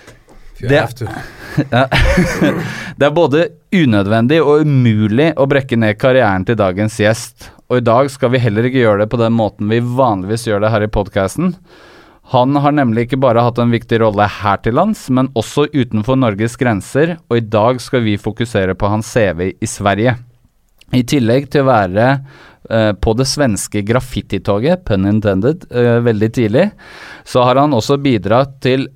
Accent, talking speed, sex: Norwegian, 165 wpm, male